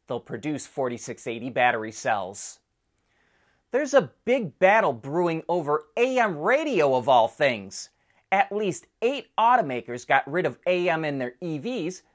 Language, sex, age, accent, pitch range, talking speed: English, male, 30-49, American, 135-200 Hz, 135 wpm